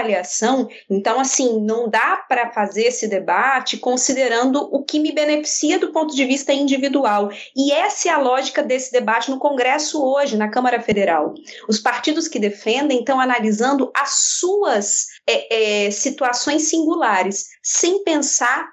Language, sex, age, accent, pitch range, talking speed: Portuguese, female, 20-39, Brazilian, 225-295 Hz, 145 wpm